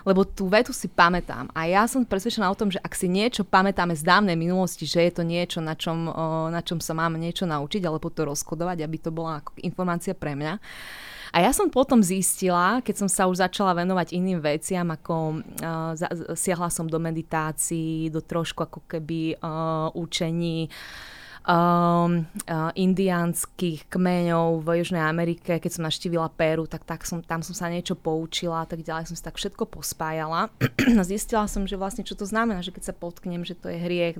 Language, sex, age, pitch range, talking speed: Slovak, female, 20-39, 165-190 Hz, 185 wpm